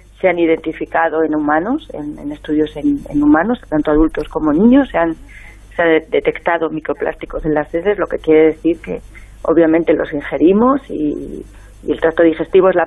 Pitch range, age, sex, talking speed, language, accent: 155-190 Hz, 40-59, female, 180 wpm, Spanish, Spanish